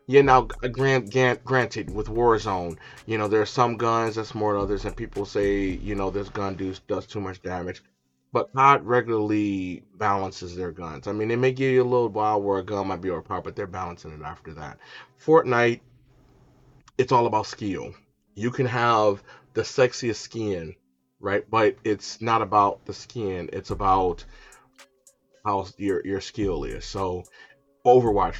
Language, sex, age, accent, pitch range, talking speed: English, male, 30-49, American, 95-115 Hz, 175 wpm